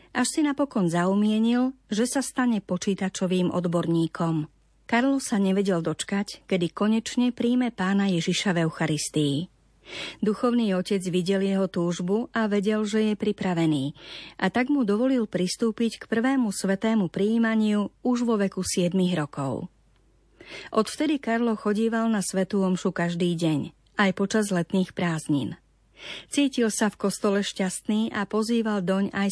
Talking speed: 130 wpm